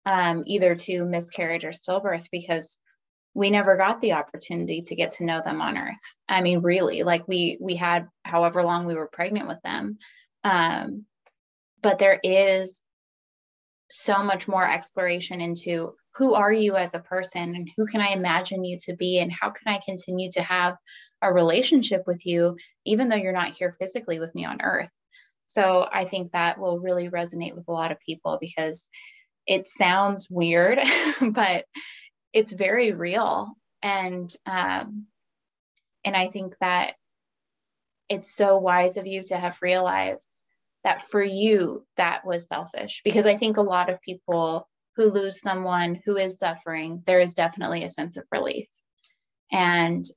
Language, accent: English, American